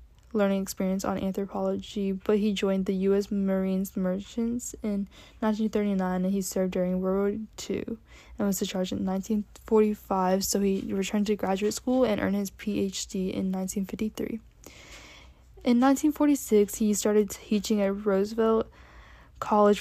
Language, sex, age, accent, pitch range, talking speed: English, female, 10-29, American, 195-220 Hz, 135 wpm